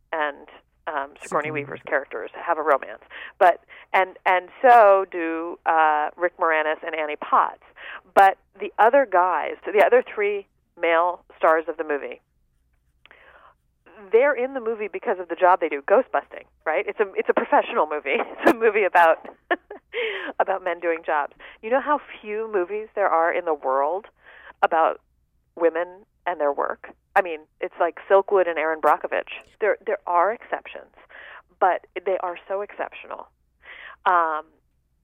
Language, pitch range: English, 160-220 Hz